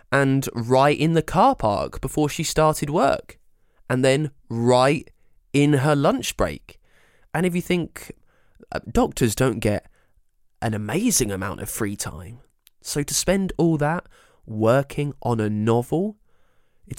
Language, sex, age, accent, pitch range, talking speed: English, male, 20-39, British, 105-145 Hz, 145 wpm